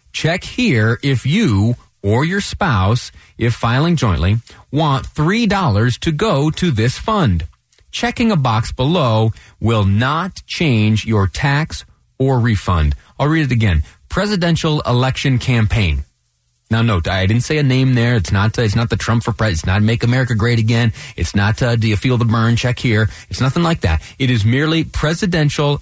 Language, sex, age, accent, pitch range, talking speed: English, male, 30-49, American, 95-125 Hz, 175 wpm